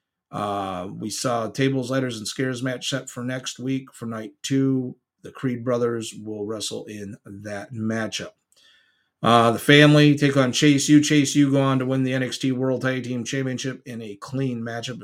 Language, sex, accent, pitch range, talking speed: English, male, American, 115-135 Hz, 185 wpm